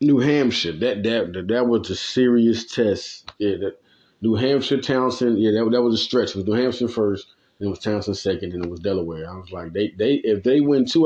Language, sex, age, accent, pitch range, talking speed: English, male, 30-49, American, 100-160 Hz, 240 wpm